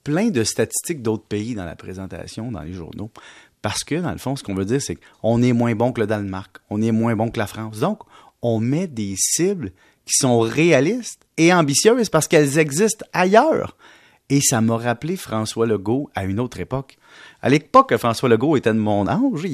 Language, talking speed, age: French, 205 wpm, 30-49